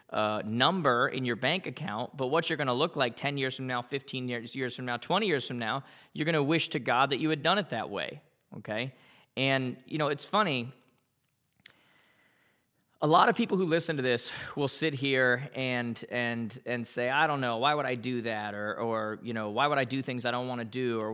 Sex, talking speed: male, 230 wpm